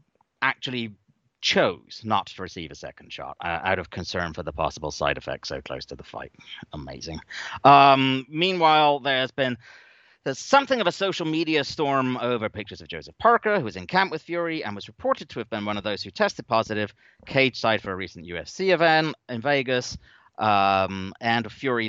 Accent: British